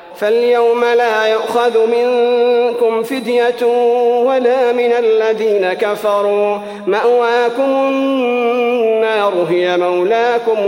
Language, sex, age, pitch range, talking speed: Arabic, male, 40-59, 205-240 Hz, 75 wpm